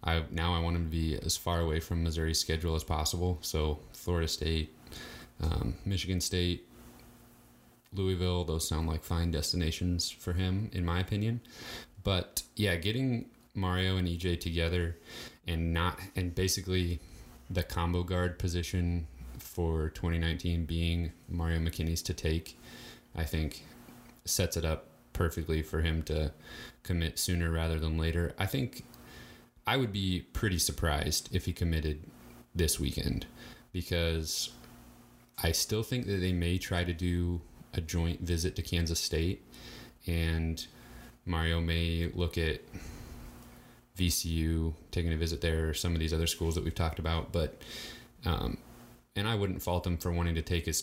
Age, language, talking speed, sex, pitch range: 20-39, English, 150 wpm, male, 80-90 Hz